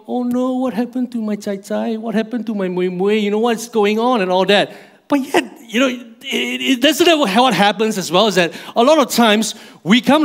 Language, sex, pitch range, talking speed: English, male, 175-230 Hz, 230 wpm